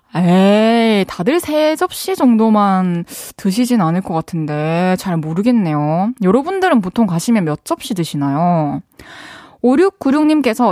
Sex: female